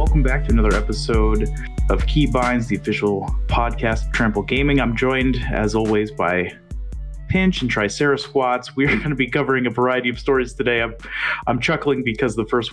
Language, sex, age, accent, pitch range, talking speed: English, male, 30-49, American, 105-135 Hz, 185 wpm